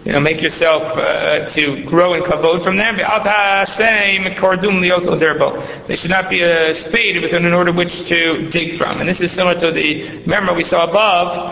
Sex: male